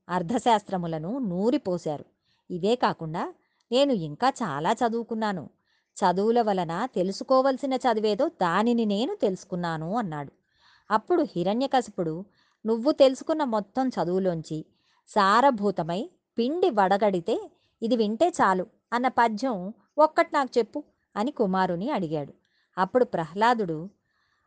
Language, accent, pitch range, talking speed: Telugu, native, 180-245 Hz, 95 wpm